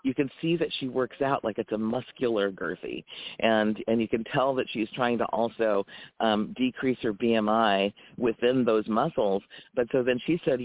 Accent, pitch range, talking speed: American, 115-140 Hz, 190 wpm